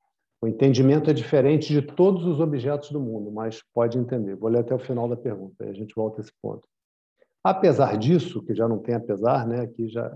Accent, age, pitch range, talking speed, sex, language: Brazilian, 50-69, 120-155 Hz, 220 wpm, male, Portuguese